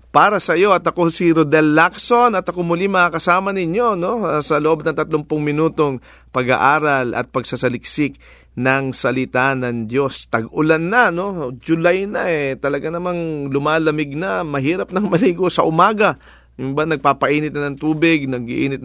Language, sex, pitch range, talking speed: English, male, 130-165 Hz, 150 wpm